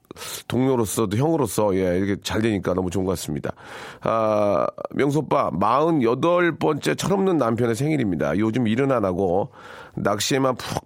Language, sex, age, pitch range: Korean, male, 40-59, 110-160 Hz